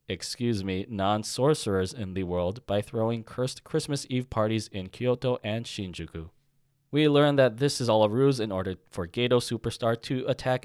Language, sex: English, male